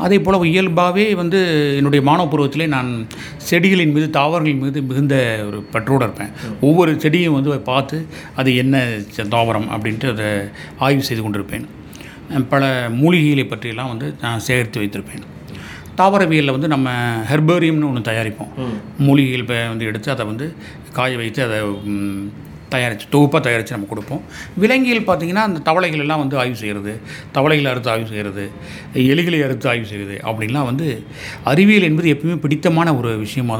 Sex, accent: male, native